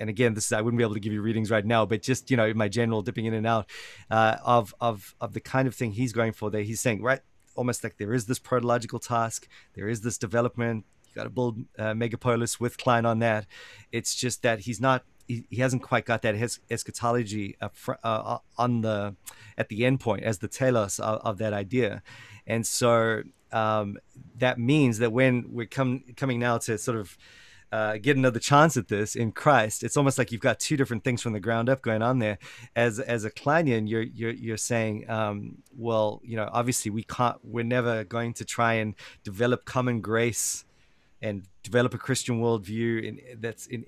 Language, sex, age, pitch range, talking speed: English, male, 30-49, 110-125 Hz, 210 wpm